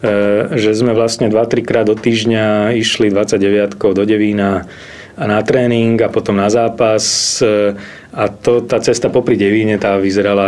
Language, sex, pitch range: Slovak, male, 95-125 Hz